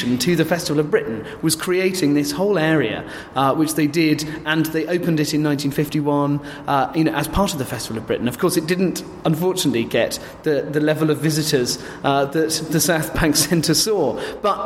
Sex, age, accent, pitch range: male, 30-49, British, 140-175 Hz